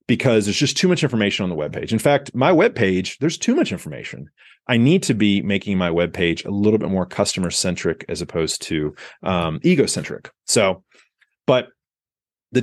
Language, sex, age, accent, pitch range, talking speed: English, male, 30-49, American, 100-135 Hz, 175 wpm